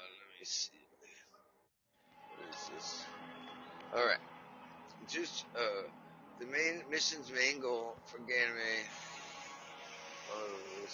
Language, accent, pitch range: English, American, 100-160 Hz